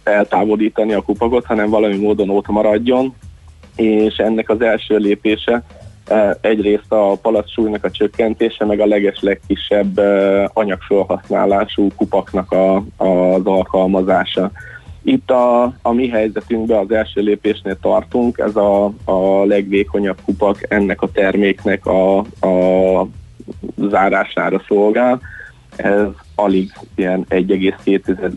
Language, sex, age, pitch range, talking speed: Hungarian, male, 20-39, 95-110 Hz, 105 wpm